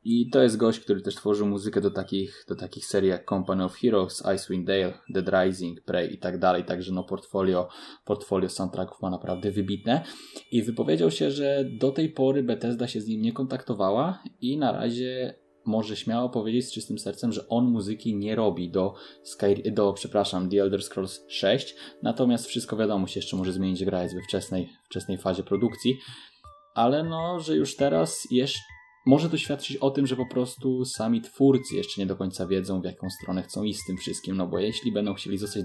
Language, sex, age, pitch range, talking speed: Polish, male, 20-39, 95-125 Hz, 195 wpm